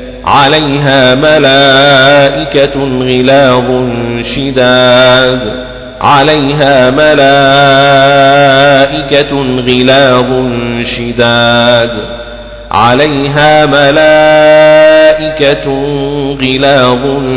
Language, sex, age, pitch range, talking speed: Arabic, male, 40-59, 125-140 Hz, 40 wpm